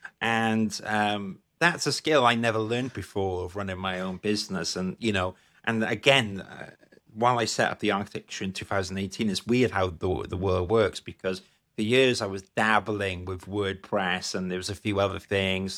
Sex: male